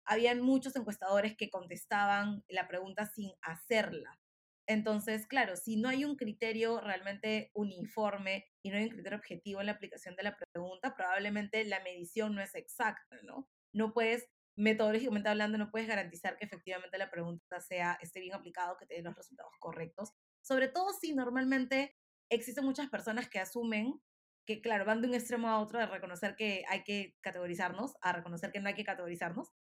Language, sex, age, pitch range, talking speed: Spanish, female, 20-39, 195-230 Hz, 180 wpm